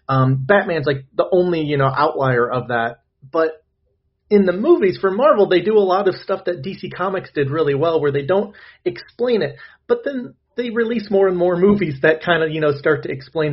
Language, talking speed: English, 215 wpm